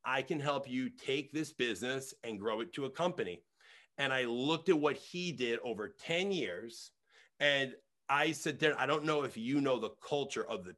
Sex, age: male, 40-59